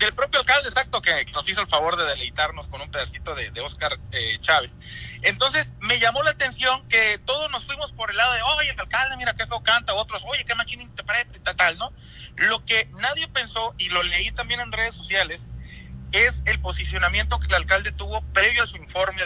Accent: Mexican